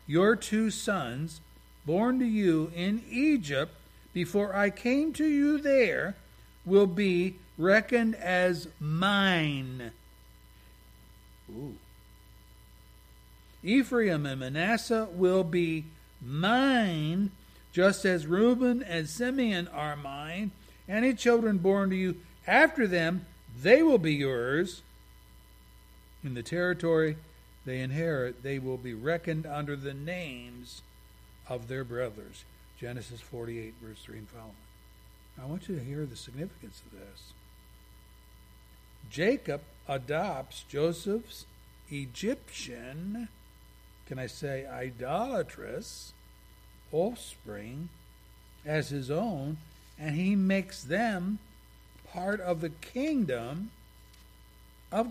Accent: American